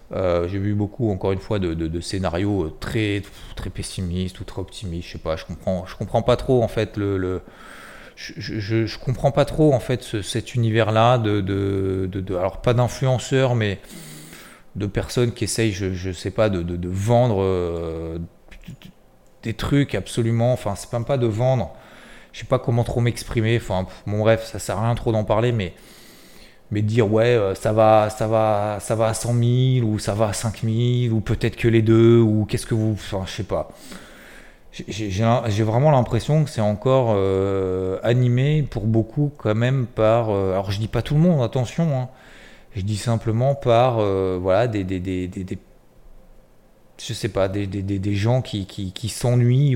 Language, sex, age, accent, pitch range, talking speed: French, male, 30-49, French, 95-120 Hz, 190 wpm